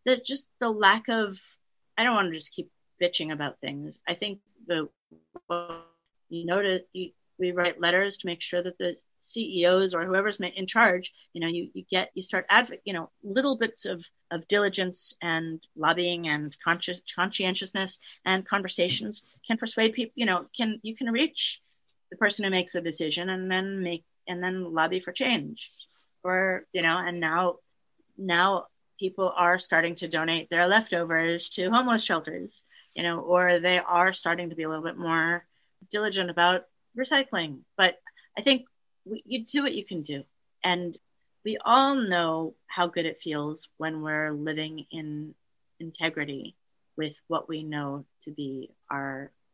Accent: American